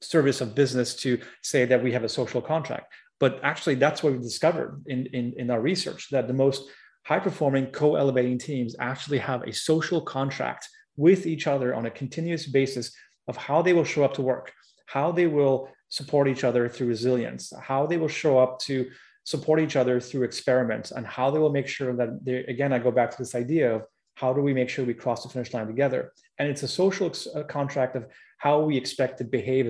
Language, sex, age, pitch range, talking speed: English, male, 30-49, 125-145 Hz, 215 wpm